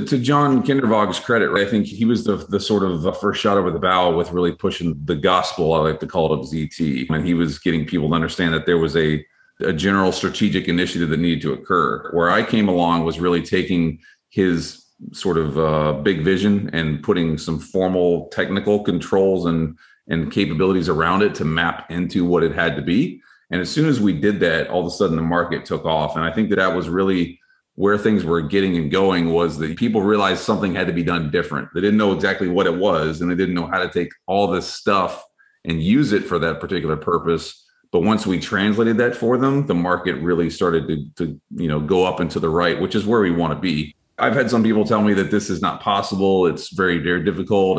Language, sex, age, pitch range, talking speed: English, male, 30-49, 85-100 Hz, 230 wpm